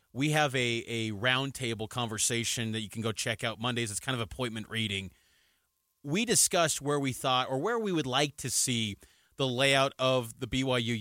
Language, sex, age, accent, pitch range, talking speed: English, male, 30-49, American, 130-205 Hz, 190 wpm